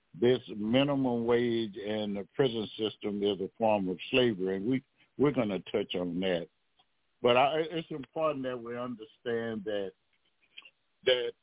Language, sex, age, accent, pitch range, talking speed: English, male, 60-79, American, 115-140 Hz, 150 wpm